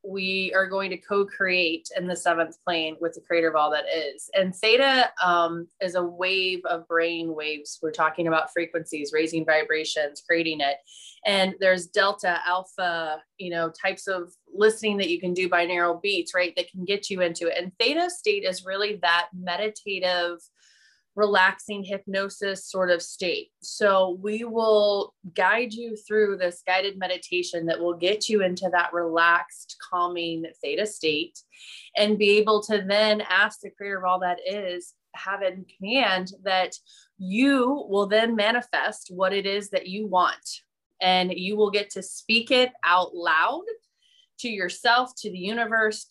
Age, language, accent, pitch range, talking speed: 20-39, English, American, 175-210 Hz, 165 wpm